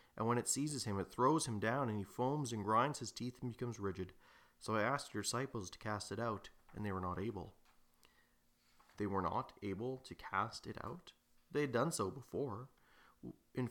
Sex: male